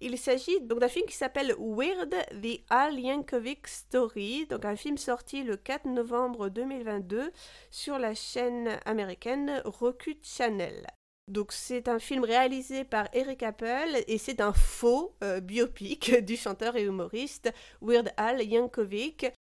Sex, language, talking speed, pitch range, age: female, French, 145 wpm, 205-250 Hz, 30-49